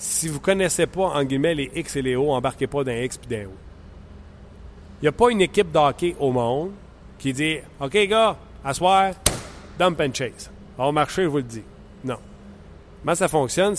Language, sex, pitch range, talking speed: French, male, 130-175 Hz, 205 wpm